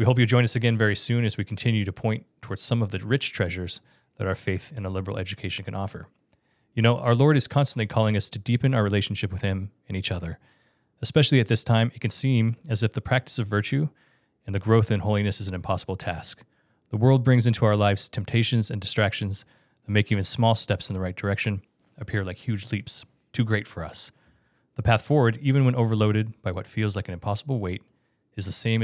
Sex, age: male, 30-49